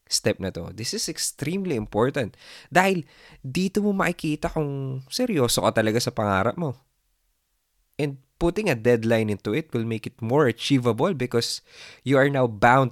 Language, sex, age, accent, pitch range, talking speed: Filipino, male, 20-39, native, 105-150 Hz, 160 wpm